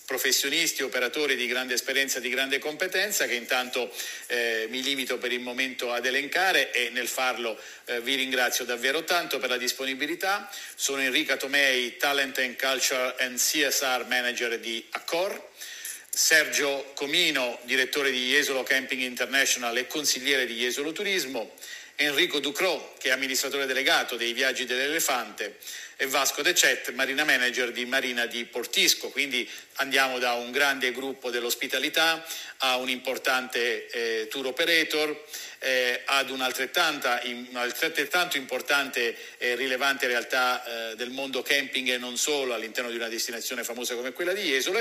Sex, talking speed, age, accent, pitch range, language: male, 140 wpm, 50-69, native, 125-150 Hz, Italian